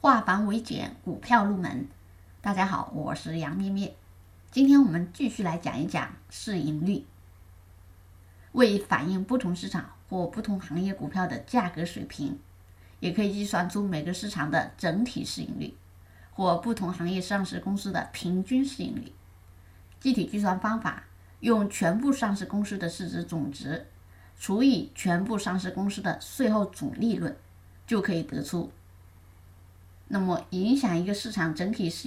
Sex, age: female, 20-39